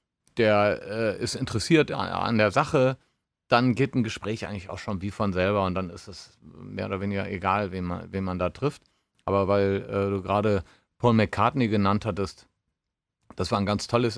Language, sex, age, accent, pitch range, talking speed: German, male, 40-59, German, 100-120 Hz, 190 wpm